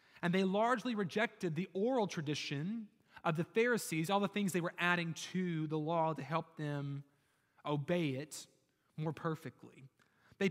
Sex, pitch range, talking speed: male, 145-205 Hz, 155 wpm